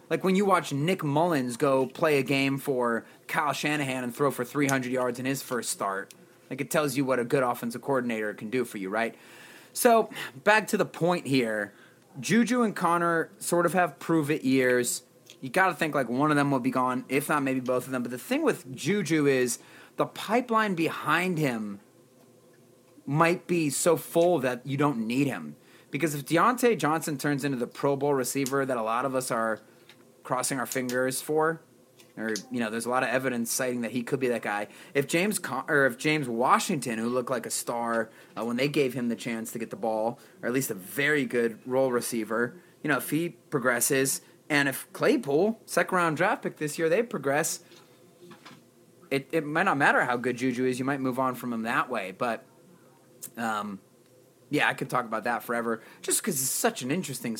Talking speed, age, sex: 210 wpm, 30-49, male